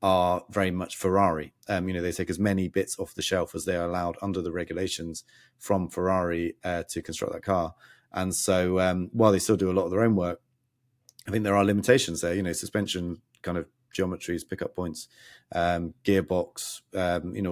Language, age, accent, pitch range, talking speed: English, 30-49, British, 90-100 Hz, 210 wpm